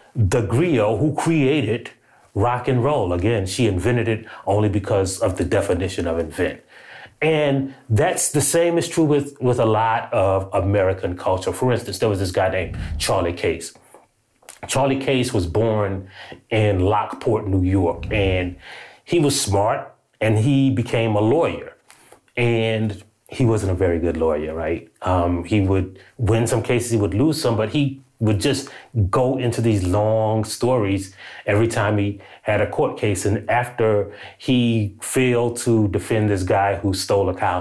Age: 30-49